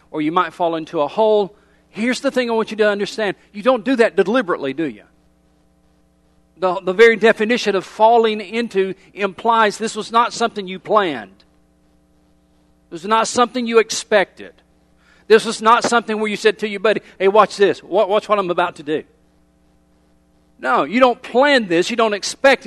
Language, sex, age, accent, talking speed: English, male, 50-69, American, 185 wpm